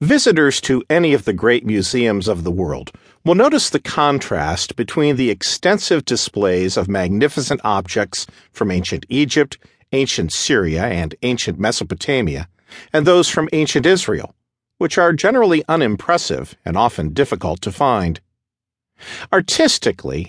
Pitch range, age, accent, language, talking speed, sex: 105-155 Hz, 50-69, American, English, 130 wpm, male